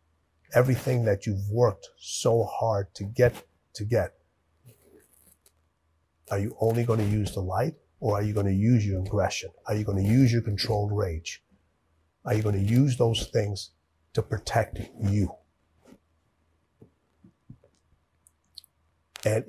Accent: American